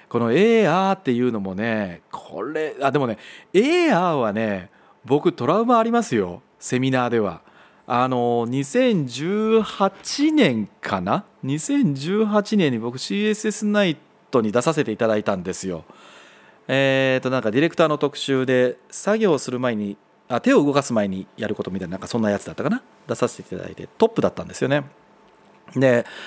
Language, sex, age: Japanese, male, 40-59